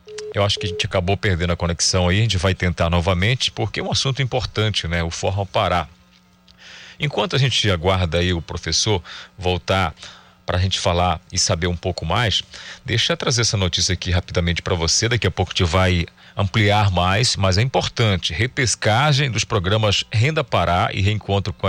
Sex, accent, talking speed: male, Brazilian, 190 wpm